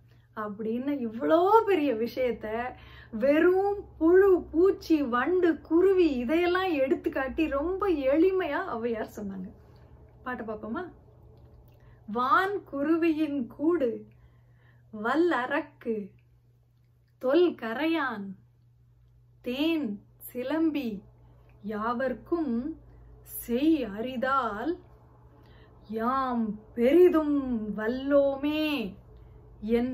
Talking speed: 55 wpm